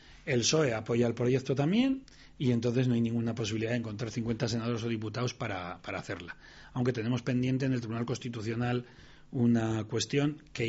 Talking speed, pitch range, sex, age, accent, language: 175 wpm, 115-145 Hz, male, 30-49, Spanish, Spanish